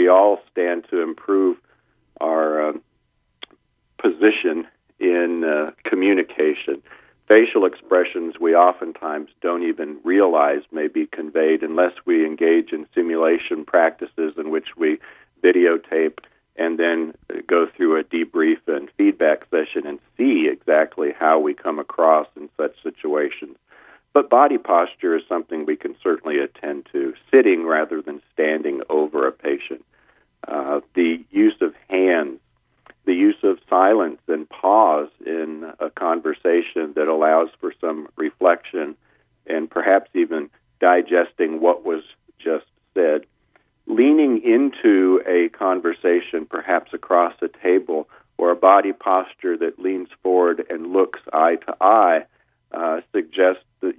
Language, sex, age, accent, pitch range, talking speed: English, male, 40-59, American, 280-370 Hz, 130 wpm